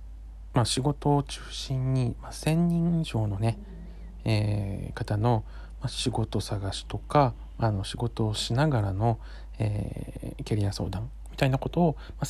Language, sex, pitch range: Japanese, male, 95-125 Hz